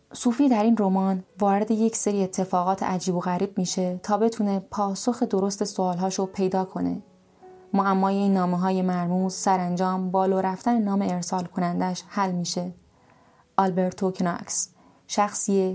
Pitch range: 180-200 Hz